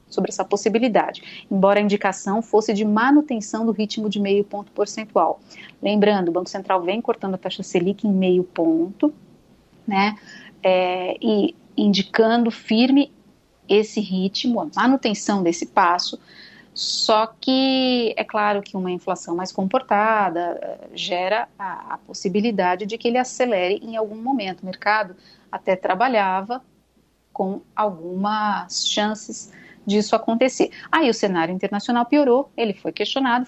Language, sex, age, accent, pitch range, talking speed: Portuguese, female, 30-49, Brazilian, 190-235 Hz, 135 wpm